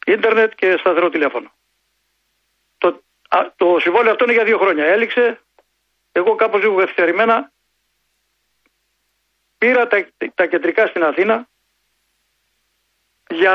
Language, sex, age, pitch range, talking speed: Greek, male, 60-79, 185-245 Hz, 105 wpm